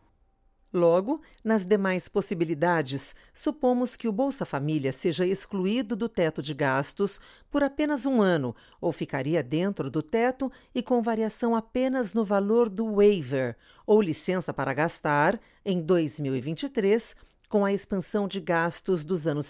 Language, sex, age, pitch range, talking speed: Portuguese, female, 50-69, 155-225 Hz, 140 wpm